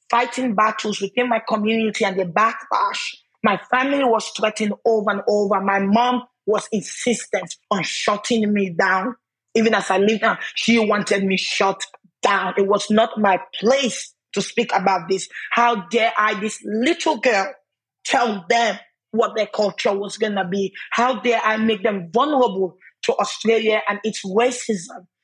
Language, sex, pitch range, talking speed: English, female, 200-235 Hz, 160 wpm